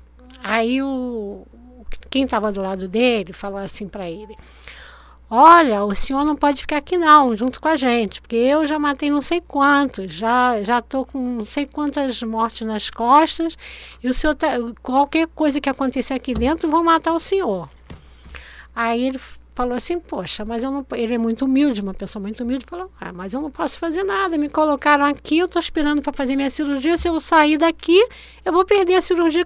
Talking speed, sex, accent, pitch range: 200 wpm, female, Brazilian, 240-315 Hz